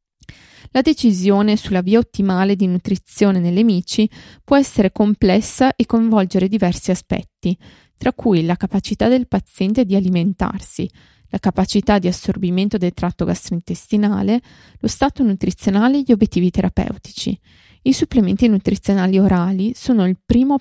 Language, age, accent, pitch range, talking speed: Italian, 20-39, native, 185-230 Hz, 130 wpm